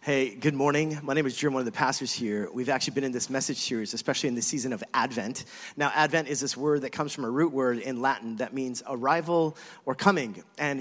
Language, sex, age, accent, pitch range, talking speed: English, male, 30-49, American, 145-200 Hz, 245 wpm